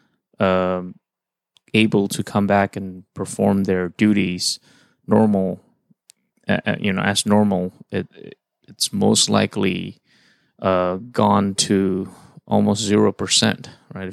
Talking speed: 115 wpm